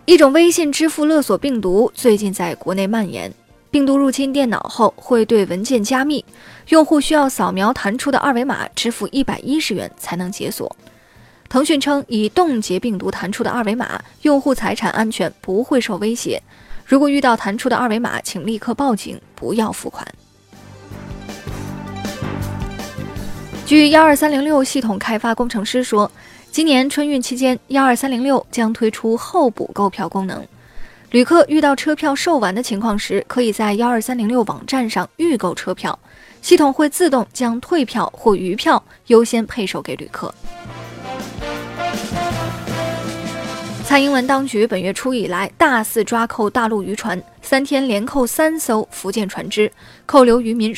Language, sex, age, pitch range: Chinese, female, 20-39, 215-280 Hz